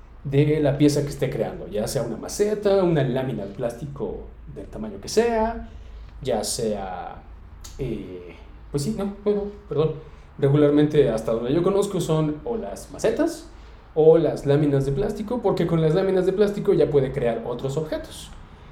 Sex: male